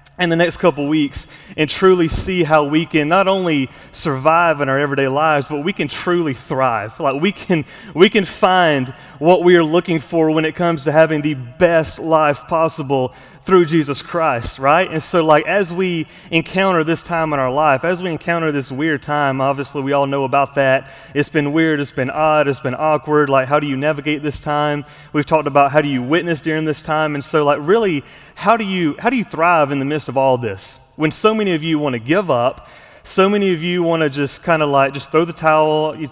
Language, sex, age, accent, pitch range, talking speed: English, male, 30-49, American, 145-170 Hz, 230 wpm